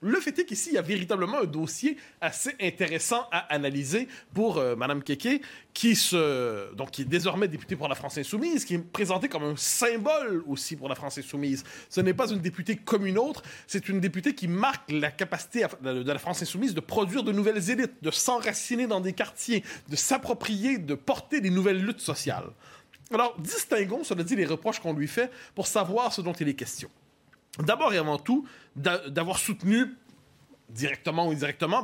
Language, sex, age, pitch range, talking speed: French, male, 30-49, 150-215 Hz, 190 wpm